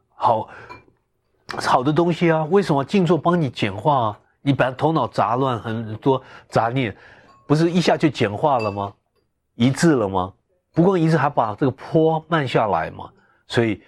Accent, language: native, Chinese